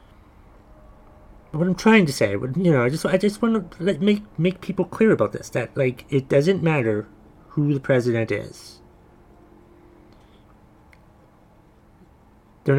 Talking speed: 135 wpm